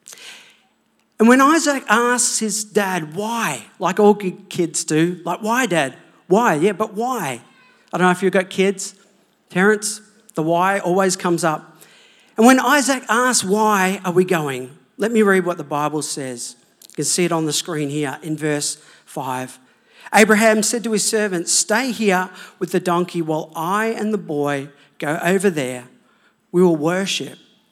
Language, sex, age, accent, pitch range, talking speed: English, male, 40-59, Australian, 155-215 Hz, 170 wpm